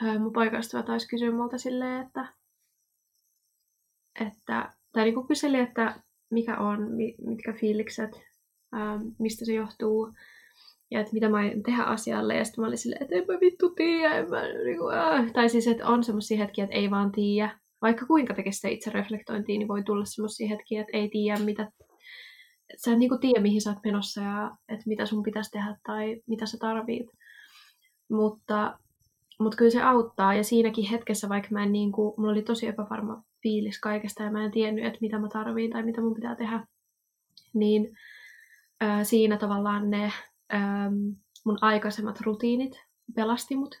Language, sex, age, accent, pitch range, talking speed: Finnish, female, 20-39, native, 210-230 Hz, 160 wpm